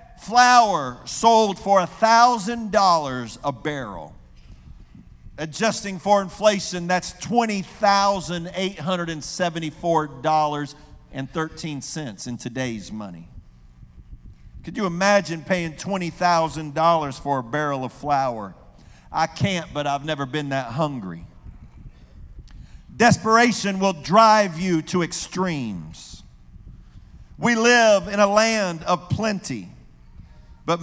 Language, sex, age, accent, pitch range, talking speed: English, male, 50-69, American, 160-215 Hz, 115 wpm